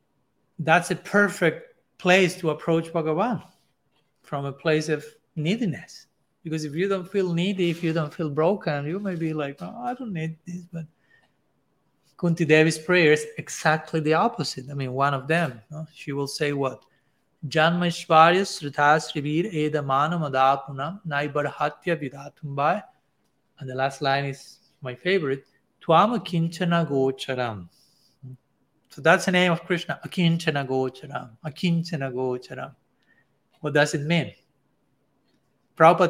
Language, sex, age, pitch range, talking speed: English, male, 30-49, 140-175 Hz, 120 wpm